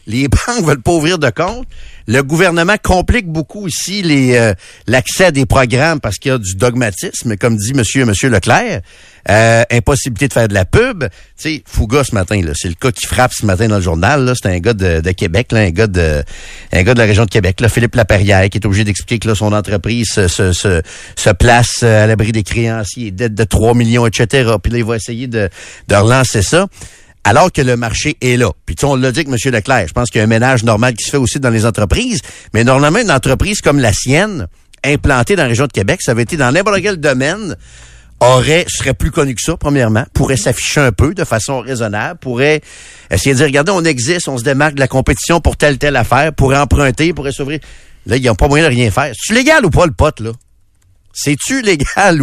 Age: 60-79